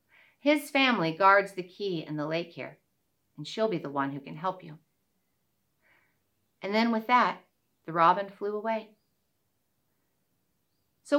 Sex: female